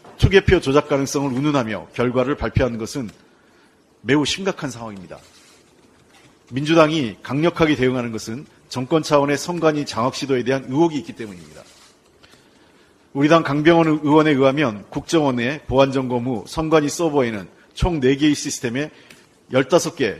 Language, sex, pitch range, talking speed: English, male, 125-155 Hz, 115 wpm